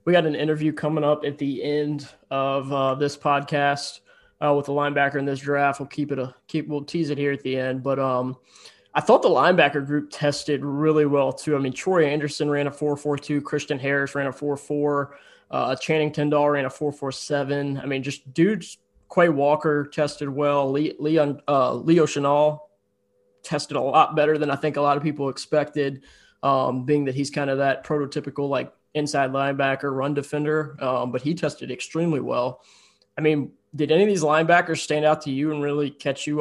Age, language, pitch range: 20-39, English, 140-155 Hz